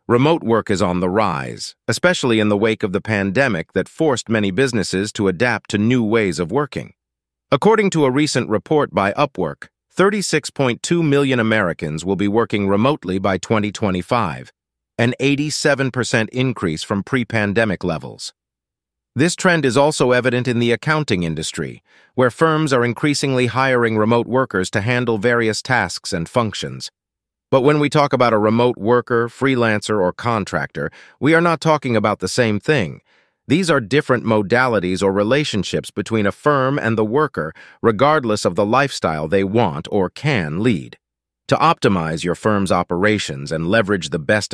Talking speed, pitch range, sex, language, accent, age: 160 wpm, 95-130 Hz, male, English, American, 40-59